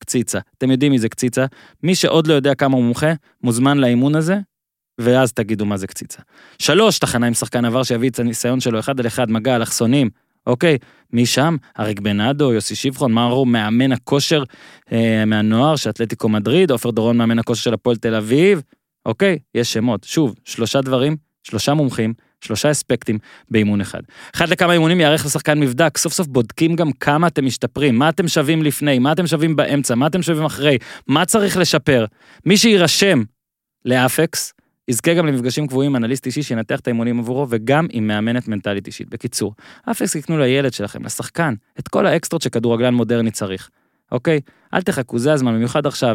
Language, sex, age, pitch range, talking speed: Hebrew, male, 20-39, 115-155 Hz, 165 wpm